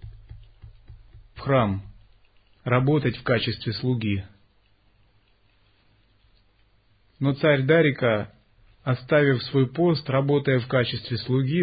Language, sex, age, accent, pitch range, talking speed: Russian, male, 30-49, native, 105-135 Hz, 75 wpm